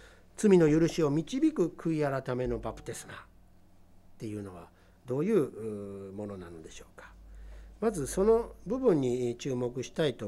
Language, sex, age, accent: Japanese, male, 60-79, native